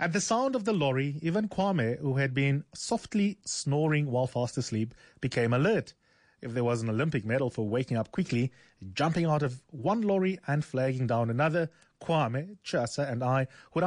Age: 30-49